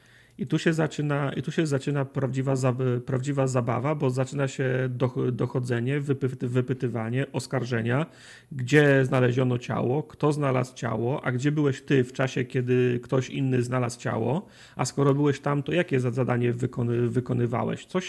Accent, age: native, 40-59